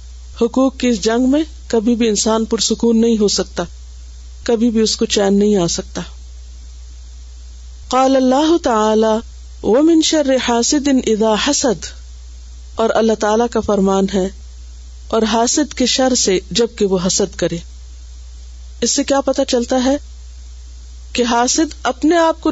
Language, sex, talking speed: Urdu, female, 150 wpm